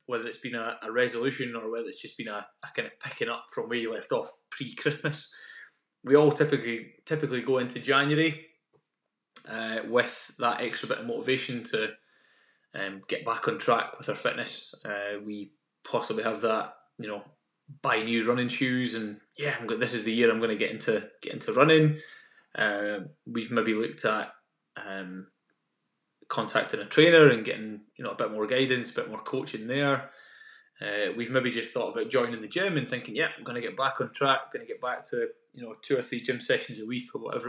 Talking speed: 210 wpm